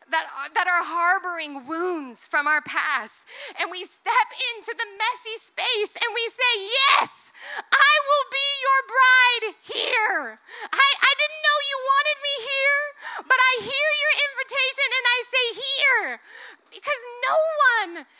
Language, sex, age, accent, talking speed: English, female, 30-49, American, 150 wpm